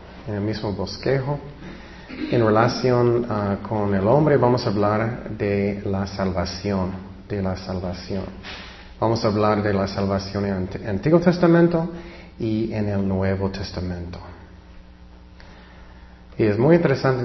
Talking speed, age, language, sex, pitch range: 130 wpm, 30-49, Spanish, male, 95-125 Hz